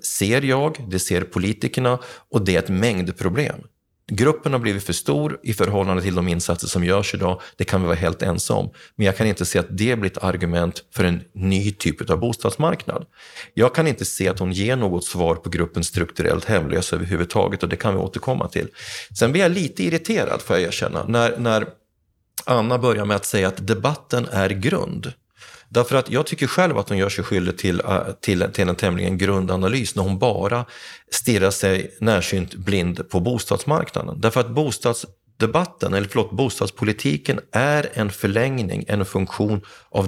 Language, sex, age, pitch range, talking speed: Swedish, male, 30-49, 95-125 Hz, 185 wpm